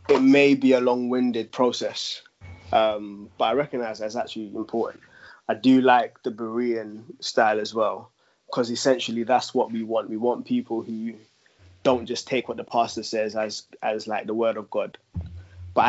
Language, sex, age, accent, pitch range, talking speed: English, male, 20-39, British, 105-125 Hz, 175 wpm